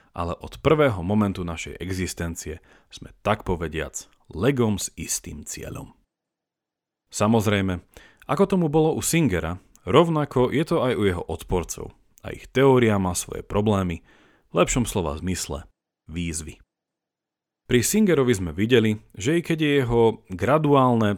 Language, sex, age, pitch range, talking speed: Slovak, male, 40-59, 90-130 Hz, 130 wpm